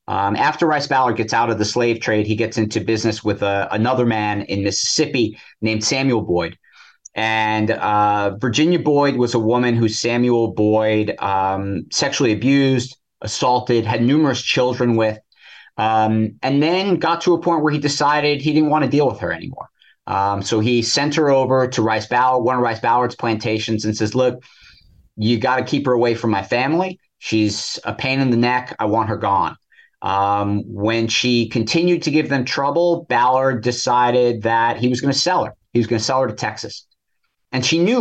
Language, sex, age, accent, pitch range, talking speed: English, male, 30-49, American, 110-140 Hz, 195 wpm